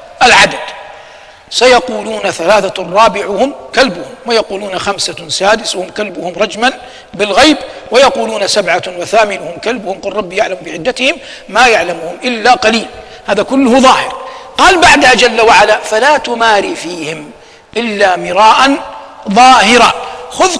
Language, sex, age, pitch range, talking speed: Arabic, male, 50-69, 205-265 Hz, 110 wpm